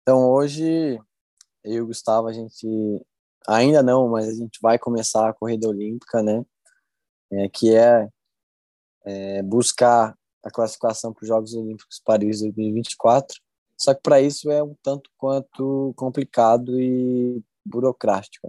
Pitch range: 110-130 Hz